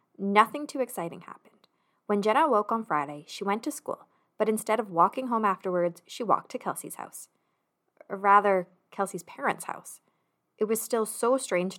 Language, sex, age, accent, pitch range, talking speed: English, female, 20-39, American, 180-245 Hz, 170 wpm